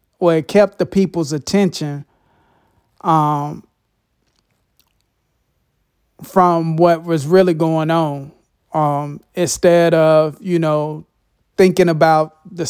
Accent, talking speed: American, 100 wpm